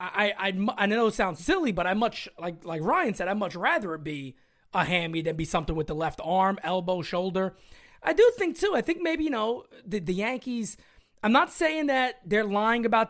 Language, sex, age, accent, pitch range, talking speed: English, male, 20-39, American, 170-235 Hz, 225 wpm